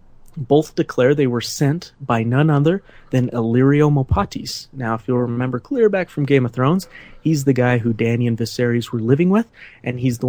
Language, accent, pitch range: English, American, 115-135 Hz